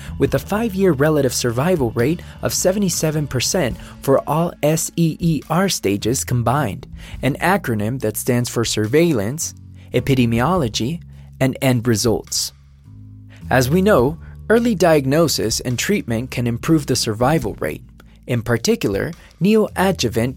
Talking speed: 115 wpm